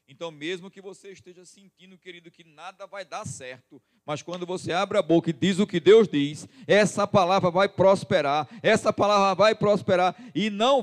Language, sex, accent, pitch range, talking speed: Portuguese, male, Brazilian, 130-195 Hz, 190 wpm